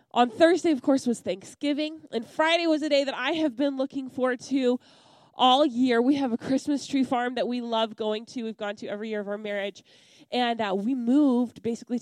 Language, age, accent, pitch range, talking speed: English, 20-39, American, 230-285 Hz, 220 wpm